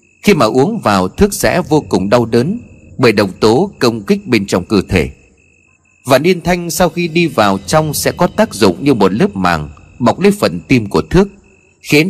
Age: 30-49